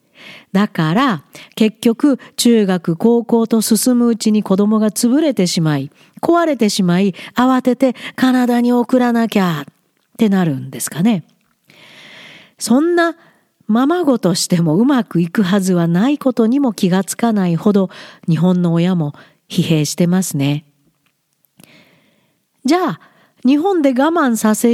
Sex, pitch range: female, 175-250 Hz